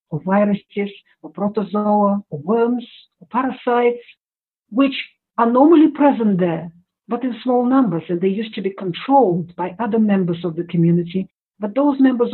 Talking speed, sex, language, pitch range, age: 155 wpm, female, English, 180-240 Hz, 50-69